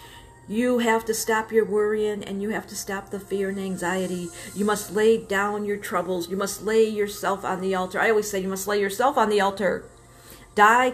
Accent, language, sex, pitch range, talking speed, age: American, English, female, 175-210 Hz, 215 wpm, 50-69